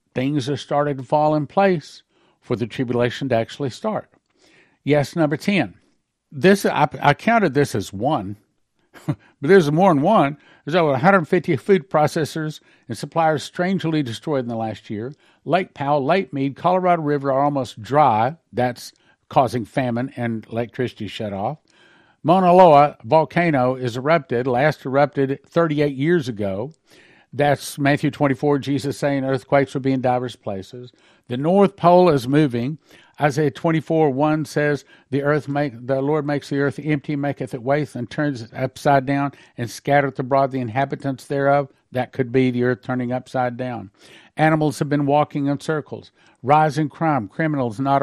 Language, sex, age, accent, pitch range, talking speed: English, male, 60-79, American, 130-155 Hz, 160 wpm